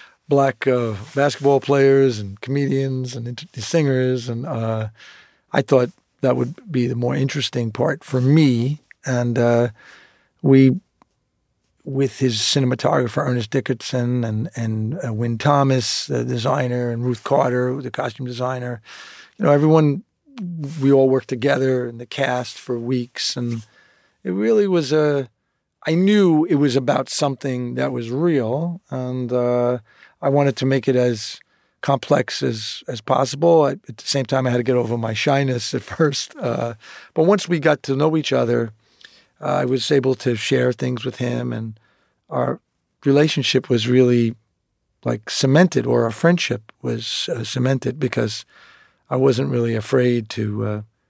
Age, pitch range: 40-59, 120-140 Hz